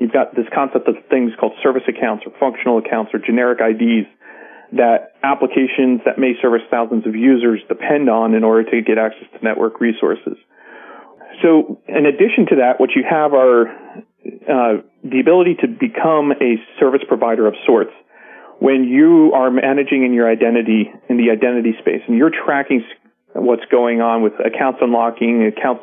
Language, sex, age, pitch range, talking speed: English, male, 40-59, 115-135 Hz, 170 wpm